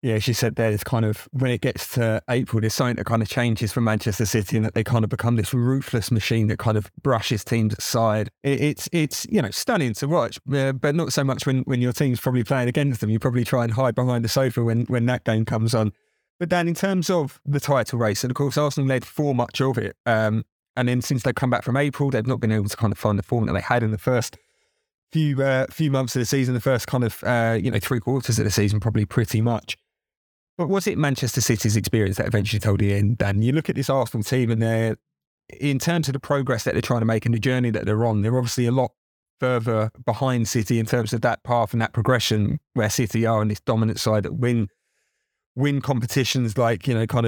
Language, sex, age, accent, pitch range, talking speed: English, male, 30-49, British, 115-130 Hz, 255 wpm